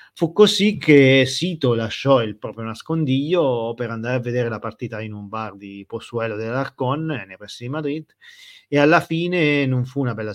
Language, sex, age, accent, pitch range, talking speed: Italian, male, 30-49, native, 100-135 Hz, 180 wpm